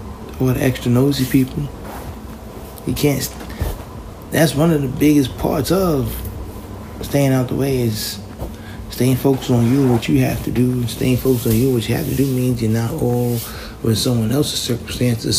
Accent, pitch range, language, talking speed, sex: American, 110-145 Hz, English, 185 wpm, male